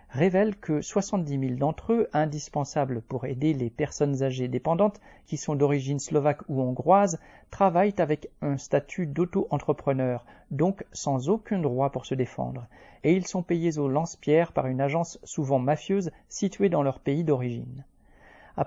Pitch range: 135-180 Hz